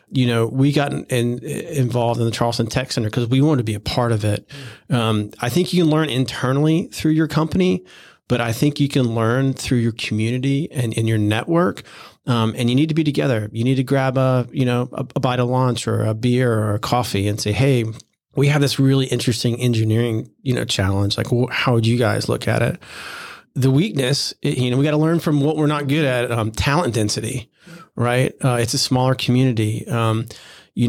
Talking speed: 220 wpm